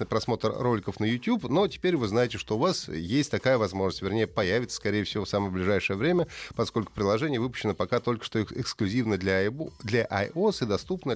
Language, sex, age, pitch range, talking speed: Russian, male, 30-49, 100-130 Hz, 180 wpm